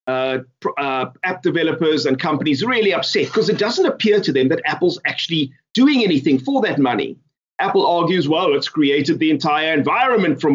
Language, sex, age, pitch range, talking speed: English, male, 30-49, 140-190 Hz, 175 wpm